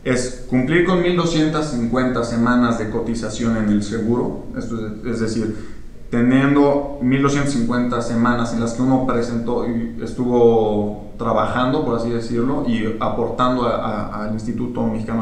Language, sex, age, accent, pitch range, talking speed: Spanish, male, 20-39, Mexican, 115-135 Hz, 130 wpm